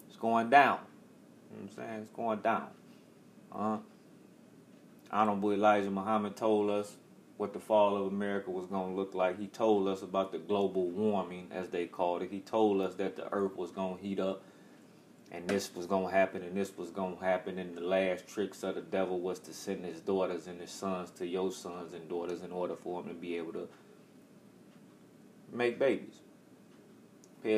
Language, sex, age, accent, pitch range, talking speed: English, male, 30-49, American, 95-105 Hz, 205 wpm